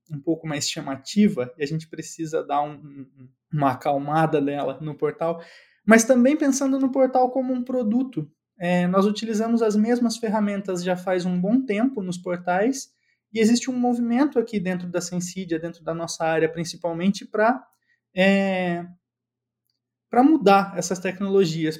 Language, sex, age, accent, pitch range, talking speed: Portuguese, male, 20-39, Brazilian, 170-220 Hz, 140 wpm